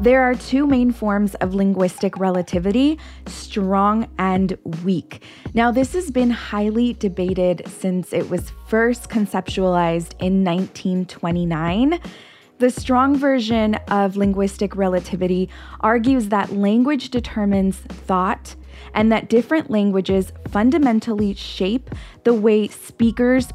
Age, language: 20-39, English